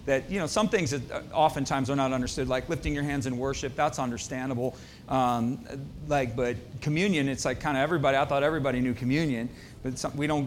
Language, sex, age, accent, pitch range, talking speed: English, male, 40-59, American, 135-185 Hz, 200 wpm